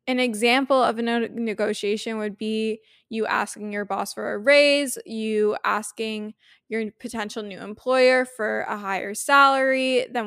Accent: American